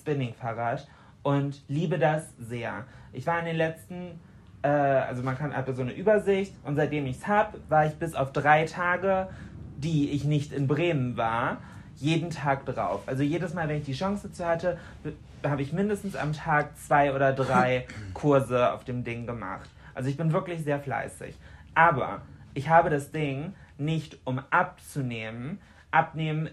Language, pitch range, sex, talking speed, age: German, 135-170 Hz, male, 170 wpm, 30-49